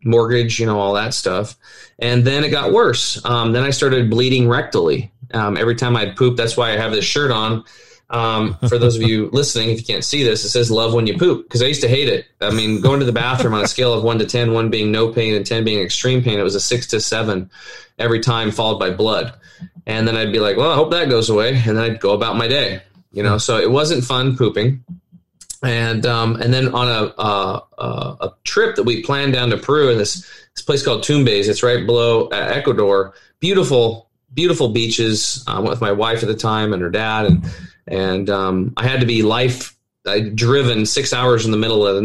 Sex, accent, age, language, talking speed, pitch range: male, American, 30-49, English, 240 wpm, 105-125 Hz